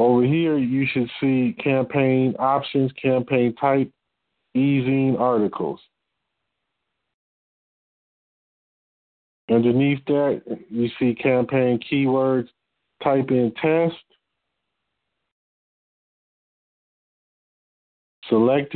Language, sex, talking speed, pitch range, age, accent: English, male, 65 wpm, 120-135 Hz, 40-59, American